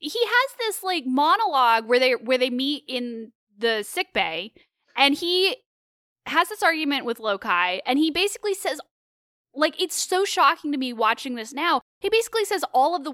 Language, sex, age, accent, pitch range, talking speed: English, female, 10-29, American, 230-345 Hz, 185 wpm